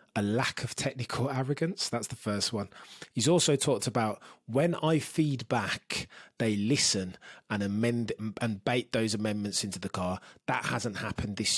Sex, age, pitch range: male, 20-39, 105-135 Hz